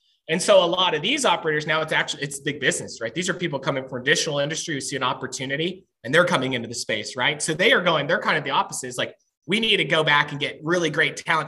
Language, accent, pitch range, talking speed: English, American, 135-185 Hz, 275 wpm